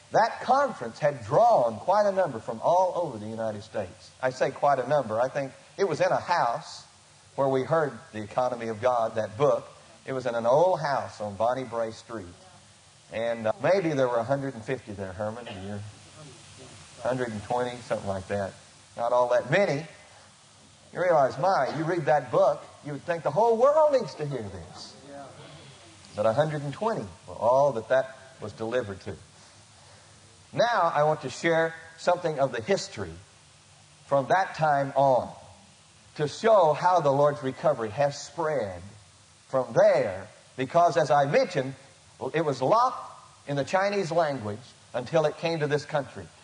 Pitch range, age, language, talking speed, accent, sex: 115-165 Hz, 50-69, English, 165 wpm, American, male